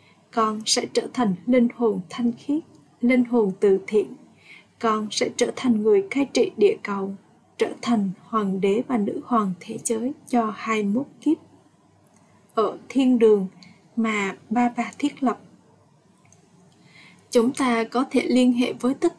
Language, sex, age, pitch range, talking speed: Vietnamese, female, 20-39, 215-250 Hz, 155 wpm